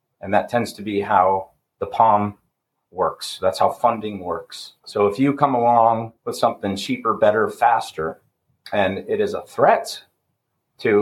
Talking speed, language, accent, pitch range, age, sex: 160 wpm, English, American, 100-135 Hz, 30-49, male